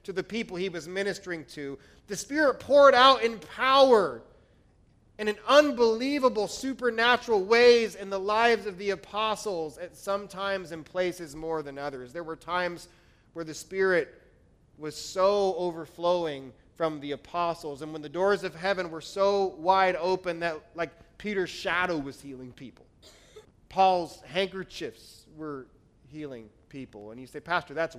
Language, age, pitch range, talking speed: English, 30-49, 150-195 Hz, 150 wpm